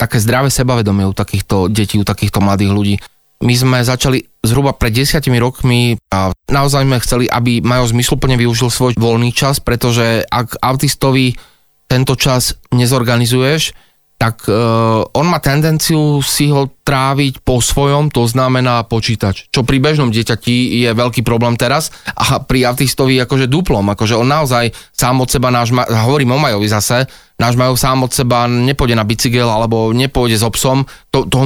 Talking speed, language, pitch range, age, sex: 160 wpm, Slovak, 115-130 Hz, 20-39, male